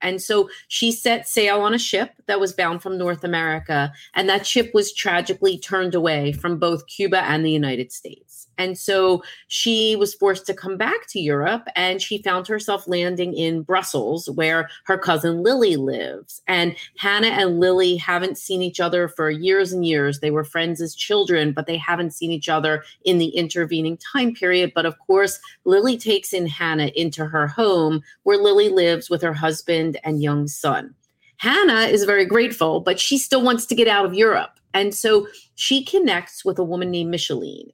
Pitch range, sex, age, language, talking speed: 165-200 Hz, female, 30-49, English, 190 wpm